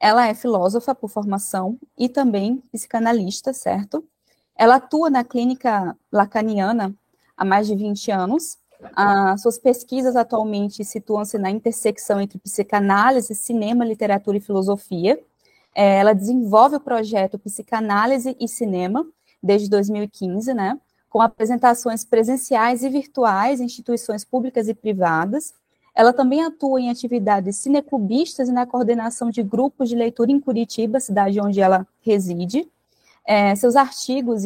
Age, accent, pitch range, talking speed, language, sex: 20-39, Brazilian, 200-245 Hz, 125 wpm, Portuguese, female